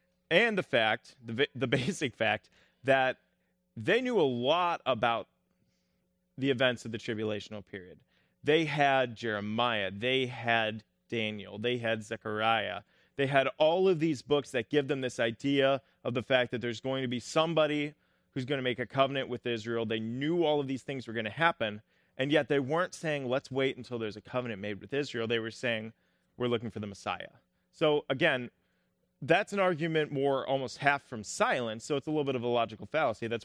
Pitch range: 115-140 Hz